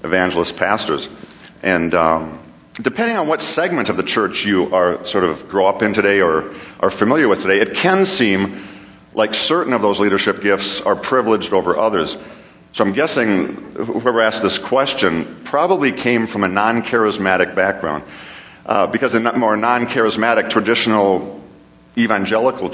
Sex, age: male, 50-69